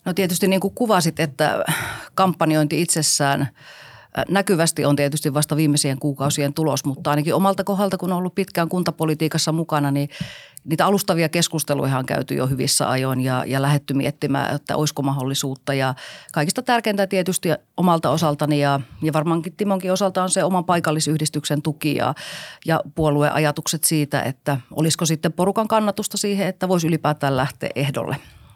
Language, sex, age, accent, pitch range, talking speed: Finnish, female, 40-59, native, 145-180 Hz, 150 wpm